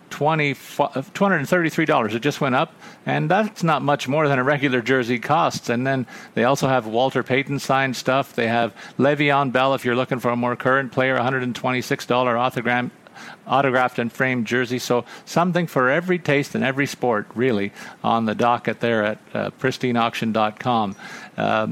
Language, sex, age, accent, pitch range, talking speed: English, male, 50-69, American, 130-170 Hz, 155 wpm